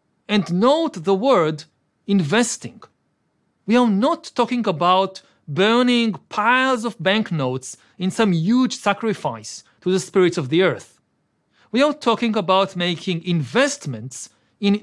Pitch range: 170-230 Hz